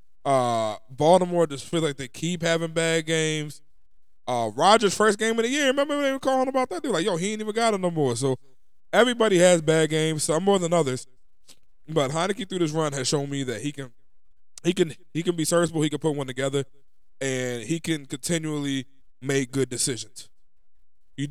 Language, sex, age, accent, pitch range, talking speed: English, male, 20-39, American, 115-165 Hz, 210 wpm